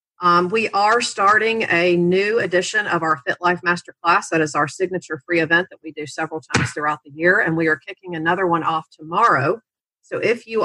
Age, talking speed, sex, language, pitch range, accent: 40-59, 210 wpm, female, English, 160-195 Hz, American